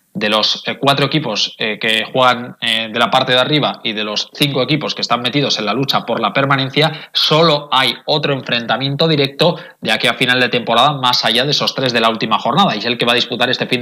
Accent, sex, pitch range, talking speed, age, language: Spanish, male, 120-145 Hz, 235 wpm, 20-39, Spanish